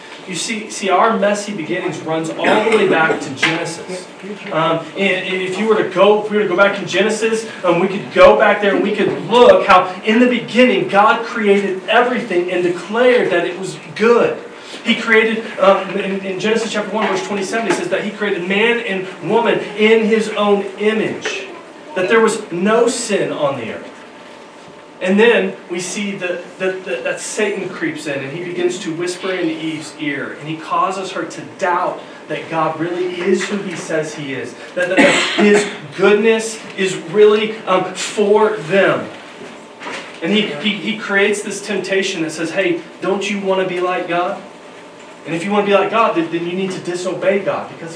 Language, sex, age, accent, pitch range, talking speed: English, male, 30-49, American, 170-210 Hz, 195 wpm